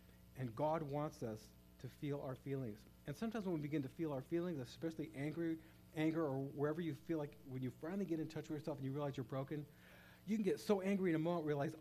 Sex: male